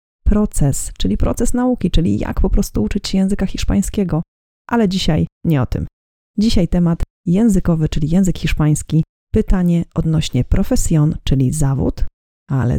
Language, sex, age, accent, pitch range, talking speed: Polish, female, 30-49, native, 150-185 Hz, 135 wpm